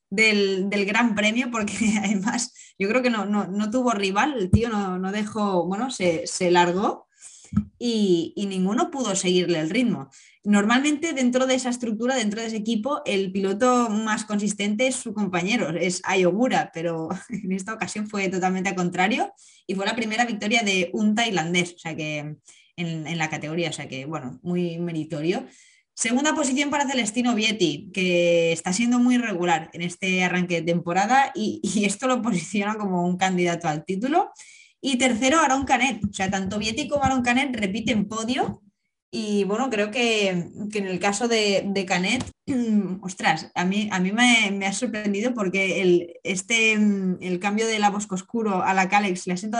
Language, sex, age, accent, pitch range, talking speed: Spanish, female, 20-39, Spanish, 185-235 Hz, 180 wpm